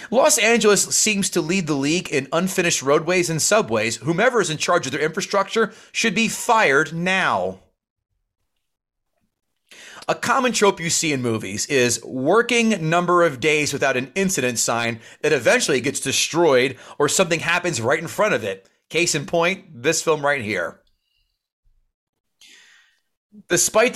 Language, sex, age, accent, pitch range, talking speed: English, male, 30-49, American, 140-205 Hz, 150 wpm